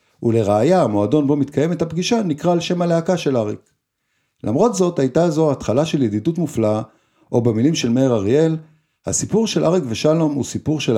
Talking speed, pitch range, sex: 170 wpm, 110-160 Hz, male